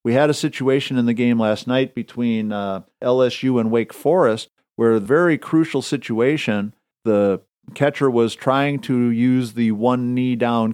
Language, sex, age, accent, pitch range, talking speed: English, male, 50-69, American, 115-135 Hz, 155 wpm